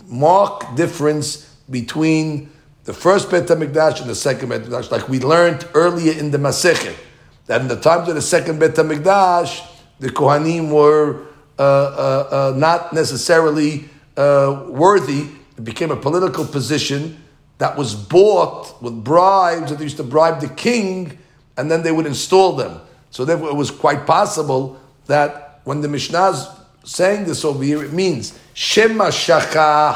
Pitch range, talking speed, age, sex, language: 145-175 Hz, 155 wpm, 50-69, male, English